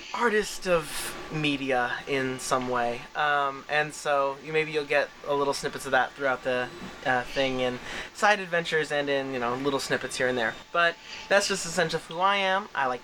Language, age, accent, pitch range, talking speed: English, 20-39, American, 135-170 Hz, 200 wpm